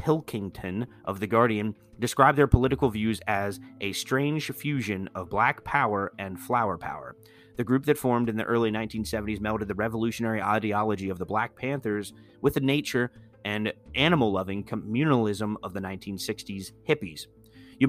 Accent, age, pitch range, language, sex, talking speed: American, 30-49, 105-130 Hz, English, male, 150 wpm